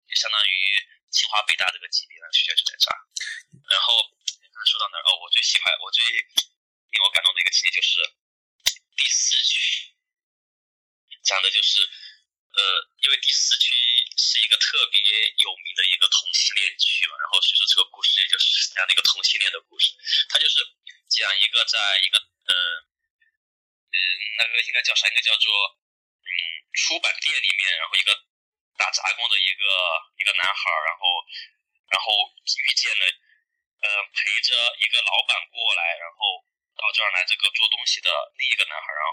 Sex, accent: male, native